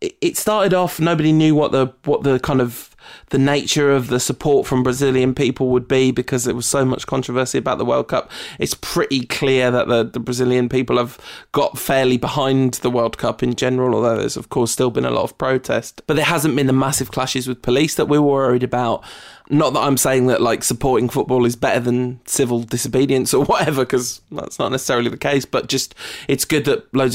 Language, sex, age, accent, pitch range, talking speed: English, male, 20-39, British, 125-140 Hz, 220 wpm